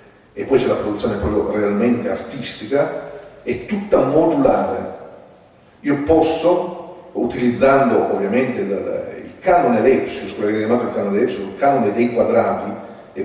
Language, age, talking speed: Italian, 40-59, 140 wpm